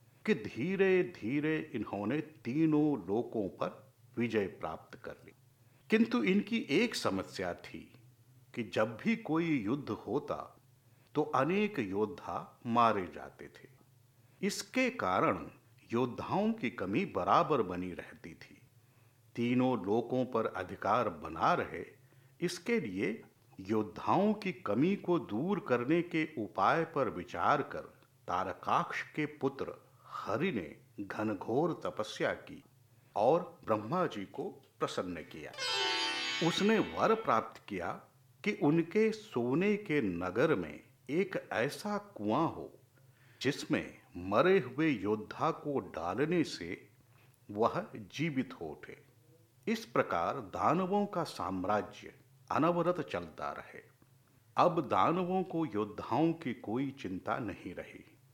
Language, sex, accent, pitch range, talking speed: Hindi, male, native, 120-180 Hz, 115 wpm